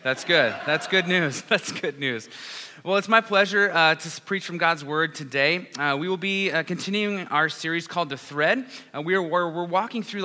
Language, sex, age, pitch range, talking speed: English, male, 30-49, 145-195 Hz, 215 wpm